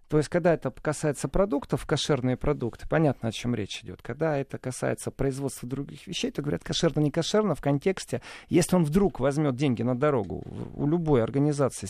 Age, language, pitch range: 40-59, Russian, 125-190 Hz